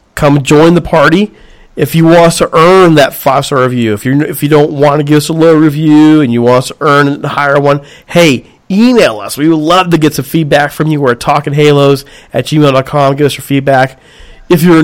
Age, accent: 40-59, American